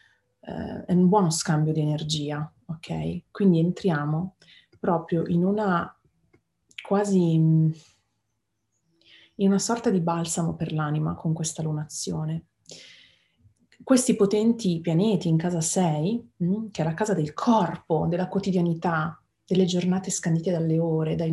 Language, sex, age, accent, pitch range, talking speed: Italian, female, 30-49, native, 155-185 Hz, 125 wpm